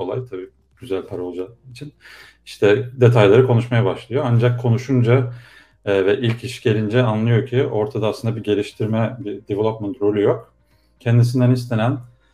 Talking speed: 140 wpm